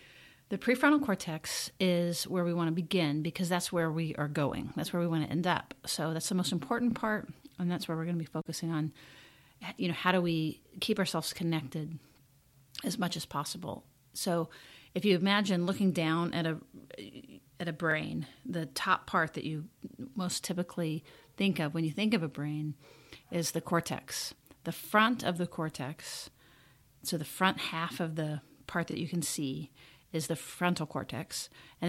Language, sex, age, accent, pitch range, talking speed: English, female, 40-59, American, 155-180 Hz, 185 wpm